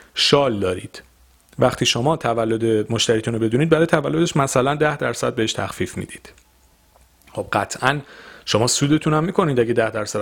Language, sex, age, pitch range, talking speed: Persian, male, 40-59, 110-150 Hz, 145 wpm